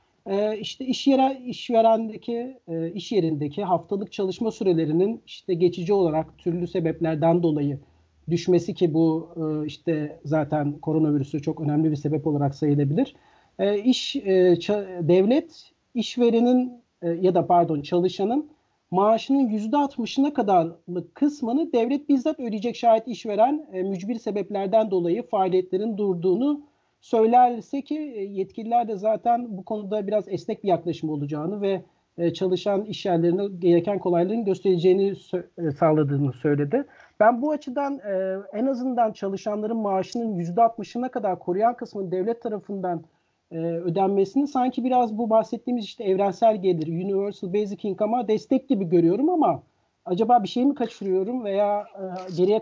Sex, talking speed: male, 125 wpm